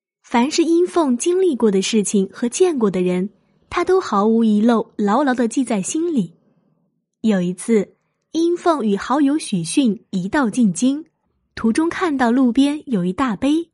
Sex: female